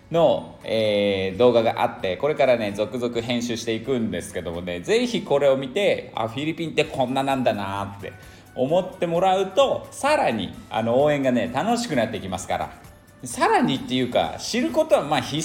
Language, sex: Japanese, male